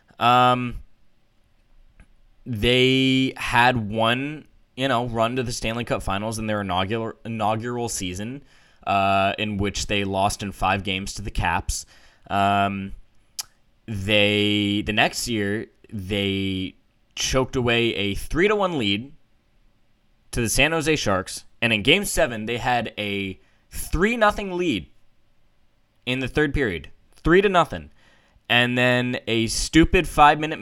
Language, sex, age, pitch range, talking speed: English, male, 10-29, 105-130 Hz, 135 wpm